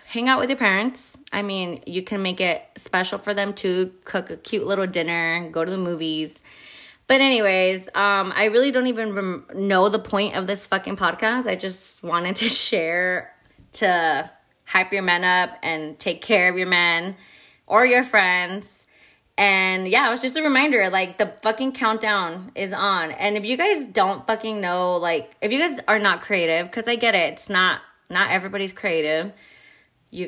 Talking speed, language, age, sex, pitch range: 190 wpm, English, 20-39, female, 180-220 Hz